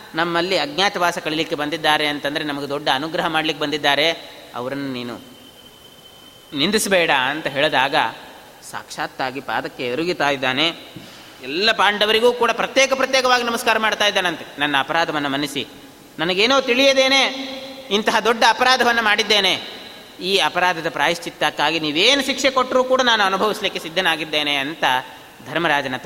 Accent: native